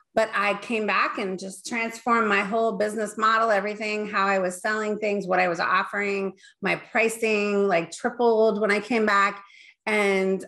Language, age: English, 30-49